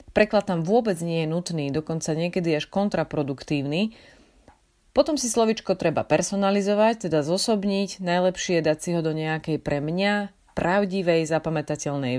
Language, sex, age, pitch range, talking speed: Slovak, female, 30-49, 150-200 Hz, 135 wpm